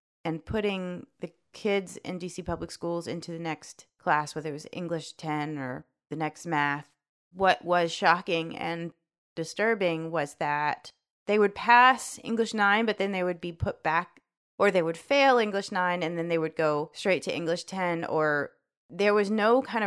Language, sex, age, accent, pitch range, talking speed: English, female, 30-49, American, 160-200 Hz, 180 wpm